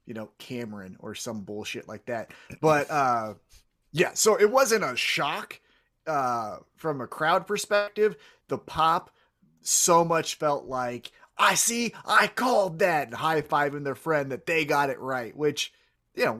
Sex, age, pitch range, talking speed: male, 30-49, 125-200 Hz, 160 wpm